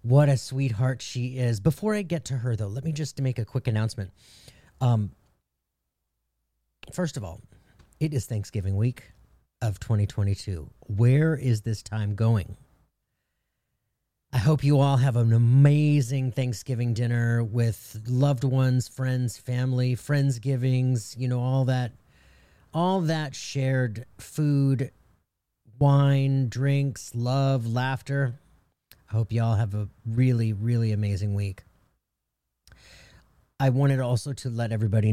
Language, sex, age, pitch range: English, male, 40-59, 110-140 Hz